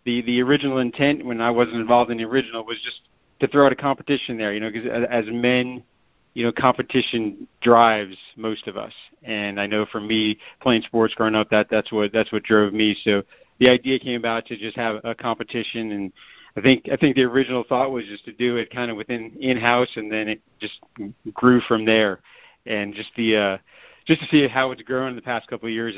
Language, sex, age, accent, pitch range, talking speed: English, male, 50-69, American, 105-125 Hz, 225 wpm